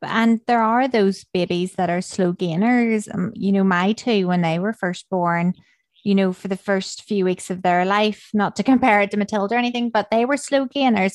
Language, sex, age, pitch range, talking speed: English, female, 20-39, 180-215 Hz, 225 wpm